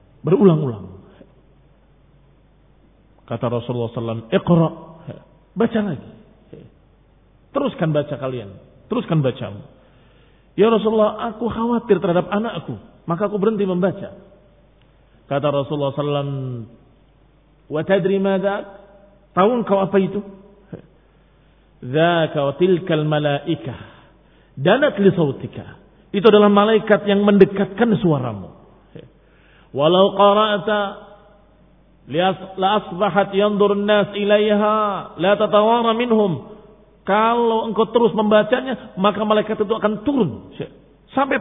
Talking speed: 85 wpm